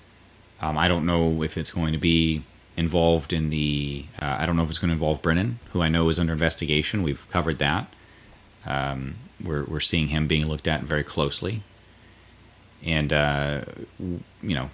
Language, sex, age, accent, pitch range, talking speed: English, male, 30-49, American, 80-100 Hz, 185 wpm